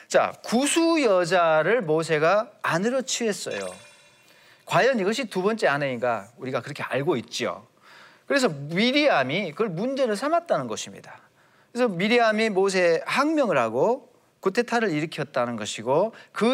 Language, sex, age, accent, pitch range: Korean, male, 40-59, native, 135-225 Hz